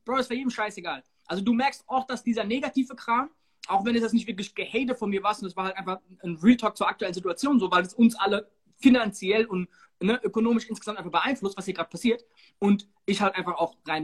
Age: 20-39